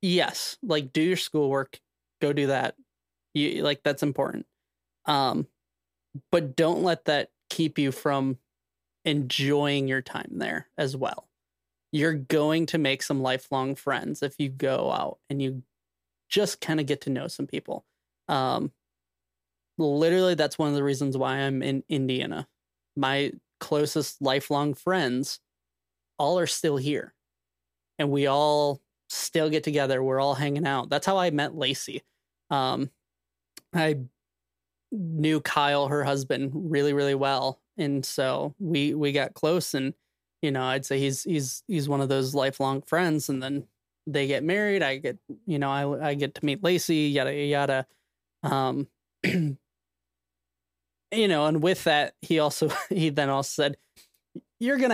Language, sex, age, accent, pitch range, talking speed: English, male, 20-39, American, 130-155 Hz, 155 wpm